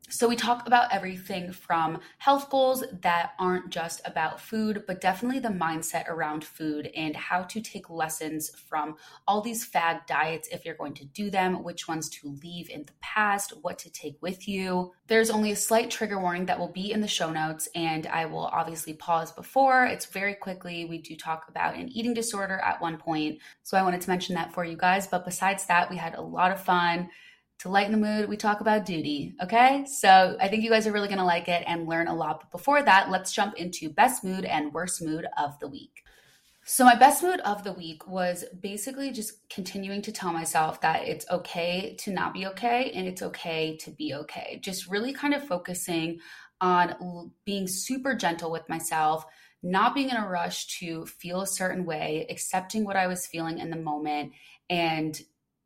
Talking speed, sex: 205 wpm, female